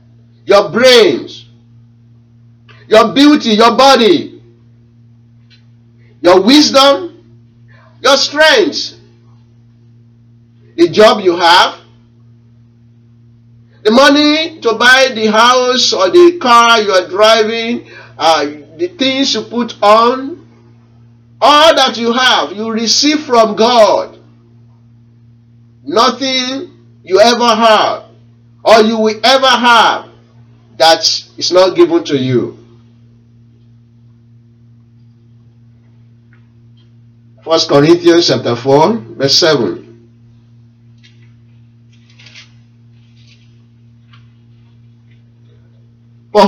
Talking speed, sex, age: 80 wpm, male, 50-69